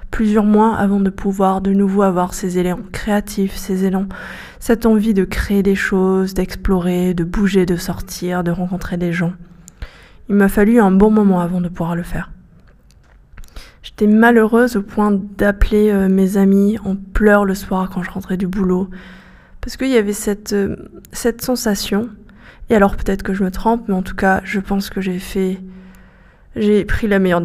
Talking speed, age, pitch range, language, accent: 185 wpm, 20-39, 185-210 Hz, French, French